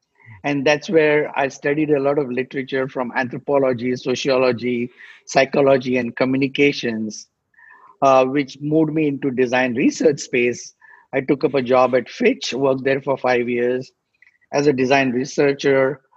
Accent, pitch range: Indian, 130-150 Hz